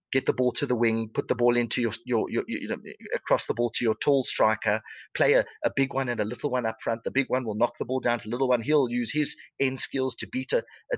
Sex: male